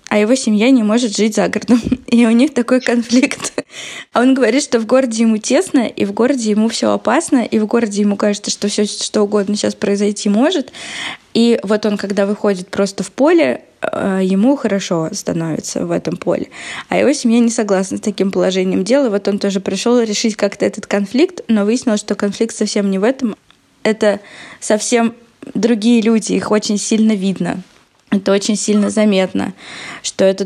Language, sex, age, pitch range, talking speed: Russian, female, 20-39, 190-225 Hz, 180 wpm